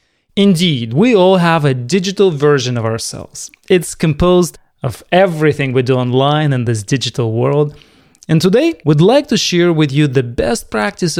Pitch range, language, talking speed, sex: 130-180 Hz, English, 165 wpm, male